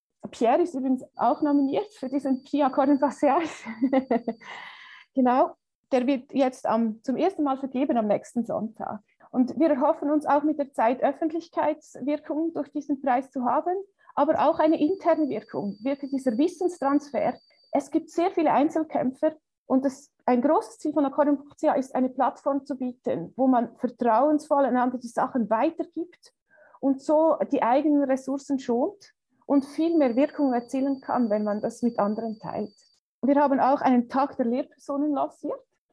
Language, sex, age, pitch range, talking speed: German, female, 30-49, 245-300 Hz, 150 wpm